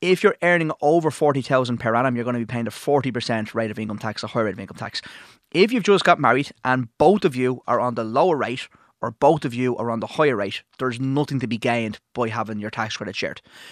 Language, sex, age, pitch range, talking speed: English, male, 20-39, 115-145 Hz, 255 wpm